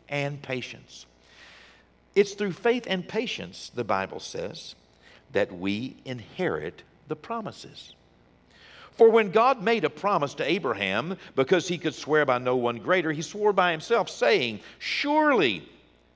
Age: 60-79